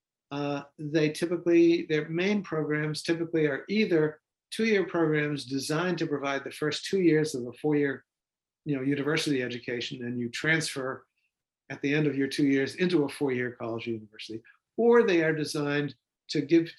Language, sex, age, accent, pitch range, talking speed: English, male, 60-79, American, 130-160 Hz, 165 wpm